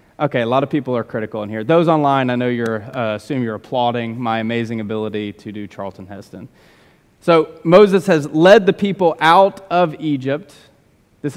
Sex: male